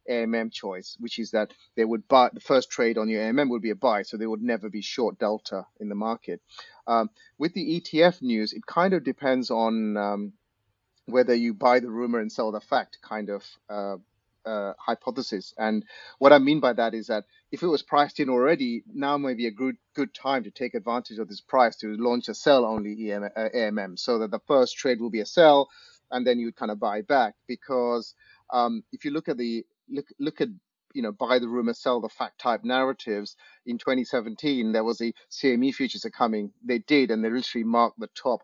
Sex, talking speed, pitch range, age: male, 220 wpm, 110-130 Hz, 30-49